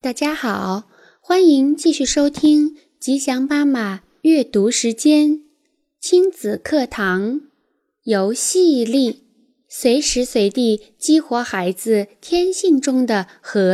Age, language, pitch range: 10-29, Chinese, 220-315 Hz